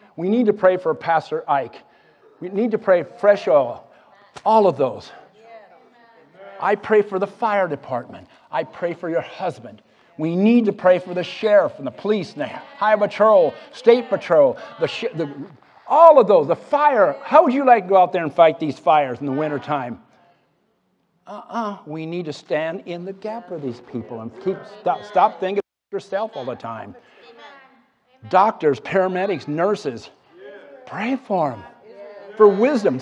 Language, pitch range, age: English, 155-205 Hz, 50-69